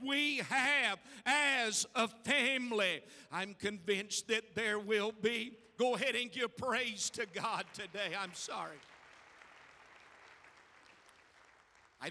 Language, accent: English, American